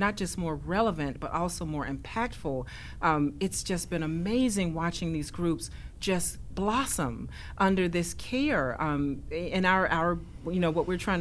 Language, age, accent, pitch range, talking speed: English, 40-59, American, 145-175 Hz, 160 wpm